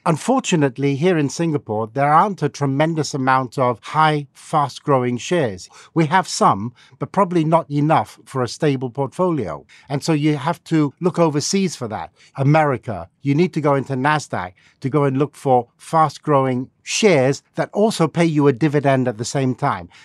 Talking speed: 175 wpm